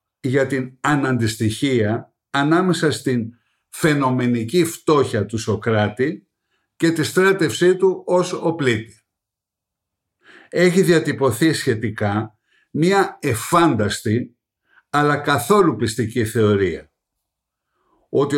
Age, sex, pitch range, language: 60-79, male, 115-175 Hz, Greek